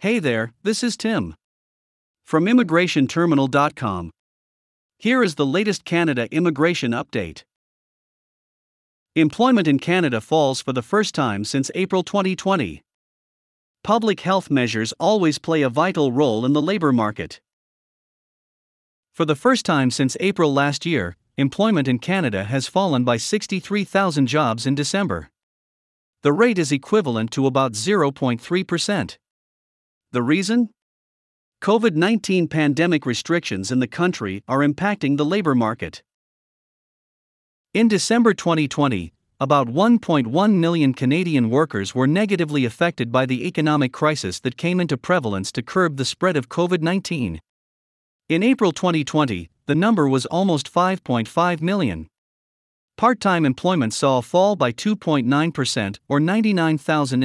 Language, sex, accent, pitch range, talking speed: English, male, American, 130-185 Hz, 125 wpm